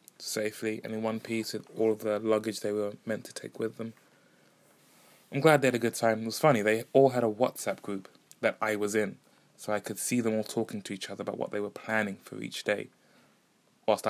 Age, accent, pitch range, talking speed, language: 20-39, British, 105-120 Hz, 240 wpm, English